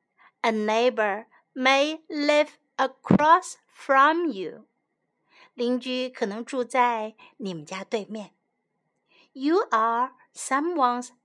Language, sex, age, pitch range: Chinese, female, 60-79, 245-330 Hz